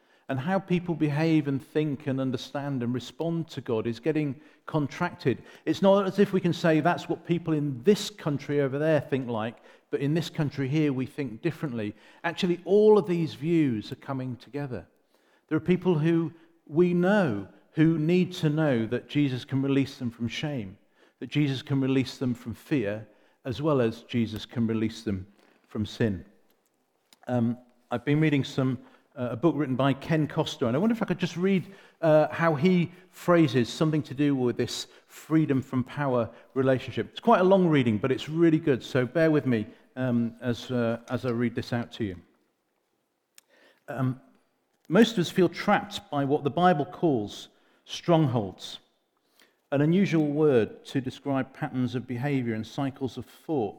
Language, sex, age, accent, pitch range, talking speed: English, male, 40-59, British, 125-165 Hz, 175 wpm